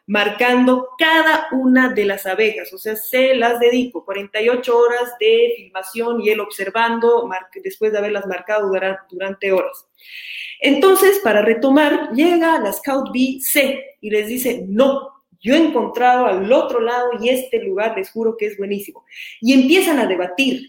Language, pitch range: Spanish, 210-275 Hz